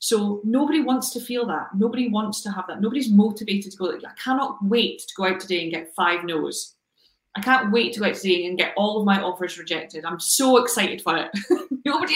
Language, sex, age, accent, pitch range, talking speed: English, female, 30-49, British, 175-210 Hz, 225 wpm